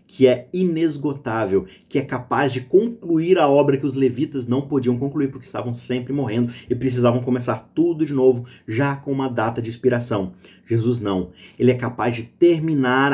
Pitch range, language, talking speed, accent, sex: 120-150 Hz, Portuguese, 180 wpm, Brazilian, male